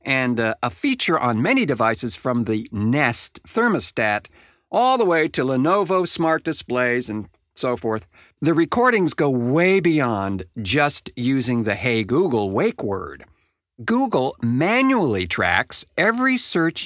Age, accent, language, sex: 50-69, American, English, male